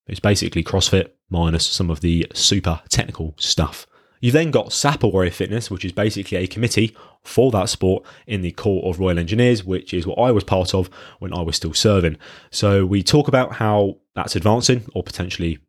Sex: male